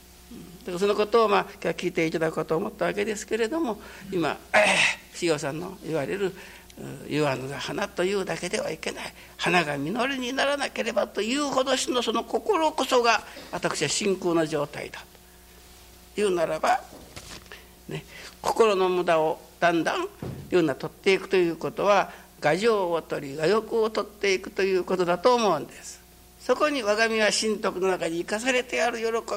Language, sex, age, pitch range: Japanese, male, 60-79, 140-225 Hz